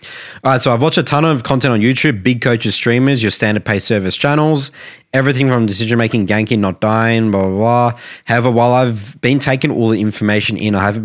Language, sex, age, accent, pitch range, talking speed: English, male, 20-39, Australian, 100-125 Hz, 215 wpm